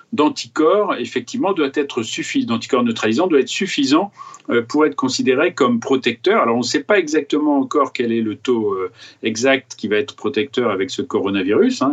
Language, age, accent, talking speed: French, 40-59, French, 185 wpm